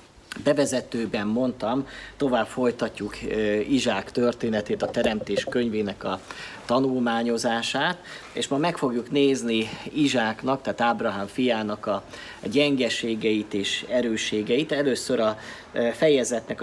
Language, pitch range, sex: Hungarian, 105-135 Hz, male